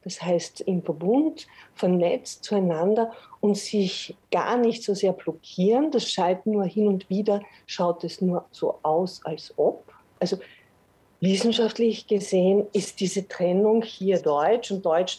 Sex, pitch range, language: female, 175-220 Hz, German